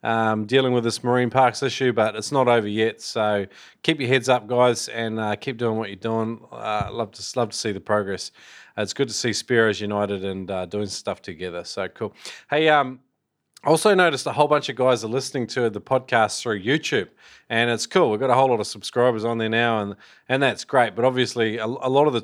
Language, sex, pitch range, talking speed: English, male, 105-125 Hz, 240 wpm